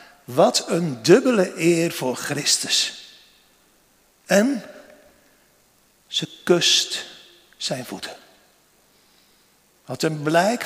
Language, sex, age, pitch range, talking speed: Dutch, male, 50-69, 155-215 Hz, 80 wpm